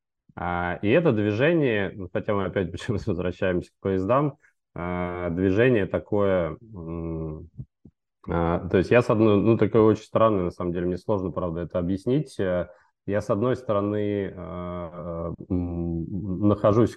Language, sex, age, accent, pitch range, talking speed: Russian, male, 20-39, native, 90-105 Hz, 120 wpm